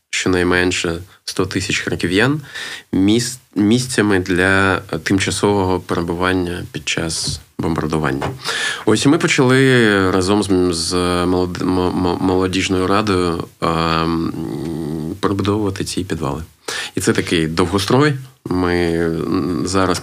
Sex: male